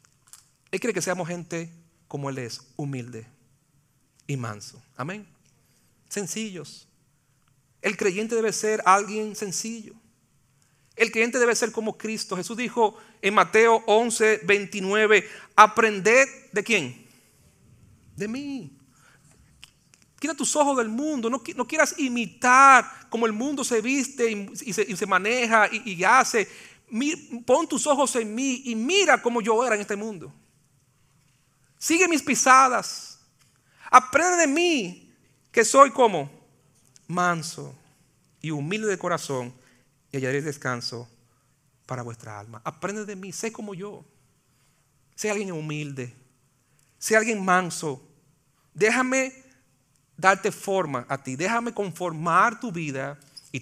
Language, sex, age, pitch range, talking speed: Spanish, male, 40-59, 135-225 Hz, 130 wpm